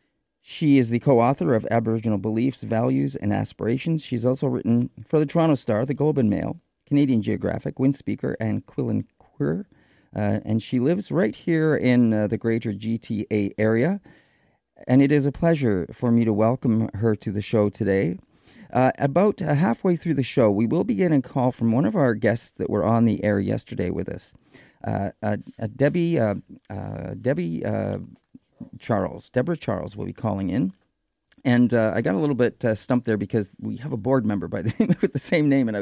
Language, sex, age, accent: English, male, 40-59, American